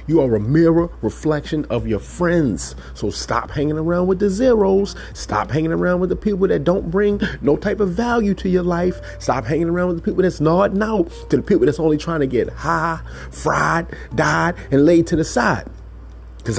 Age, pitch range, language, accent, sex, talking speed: 30-49, 110-165 Hz, English, American, male, 205 wpm